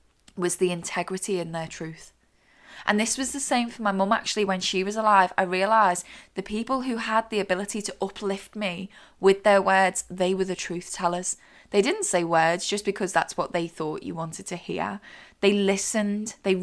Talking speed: 200 wpm